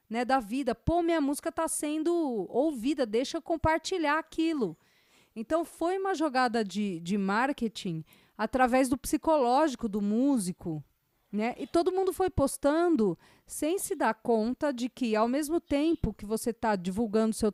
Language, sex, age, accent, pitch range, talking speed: Portuguese, female, 40-59, Brazilian, 200-285 Hz, 155 wpm